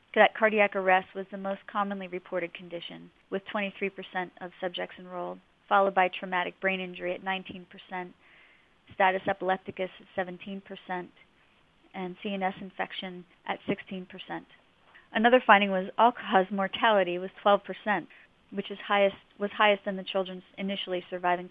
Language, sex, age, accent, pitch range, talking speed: English, female, 30-49, American, 180-200 Hz, 125 wpm